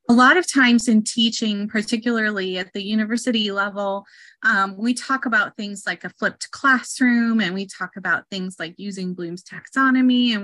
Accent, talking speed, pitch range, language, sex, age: American, 170 wpm, 195-245 Hz, English, female, 30-49